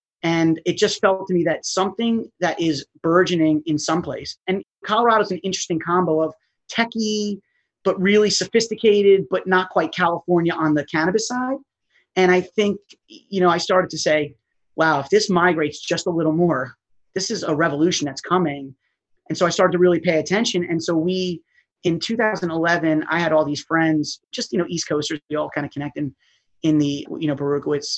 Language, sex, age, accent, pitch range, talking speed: English, male, 30-49, American, 150-185 Hz, 195 wpm